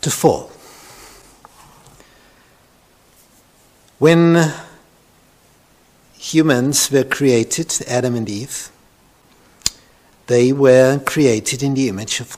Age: 60-79